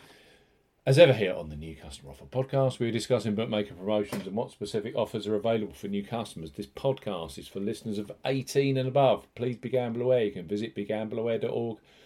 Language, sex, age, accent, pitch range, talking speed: English, male, 40-59, British, 100-130 Hz, 190 wpm